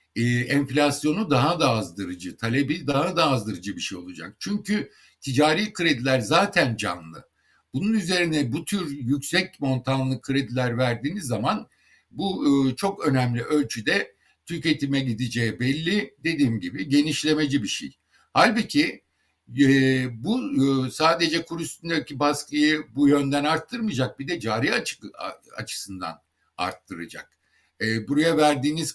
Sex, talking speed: male, 120 wpm